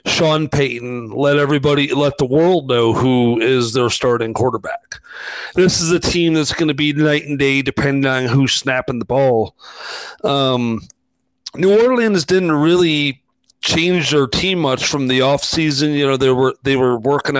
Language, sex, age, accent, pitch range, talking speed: English, male, 40-59, American, 125-150 Hz, 170 wpm